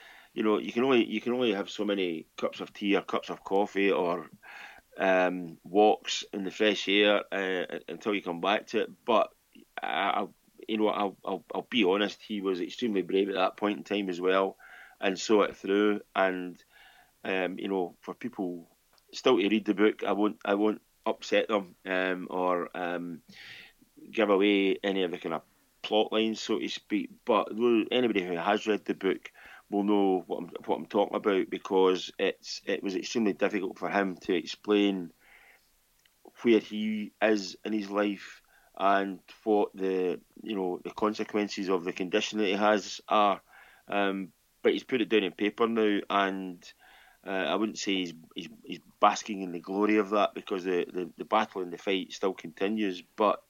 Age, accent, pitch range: 30-49, British, 95-105 Hz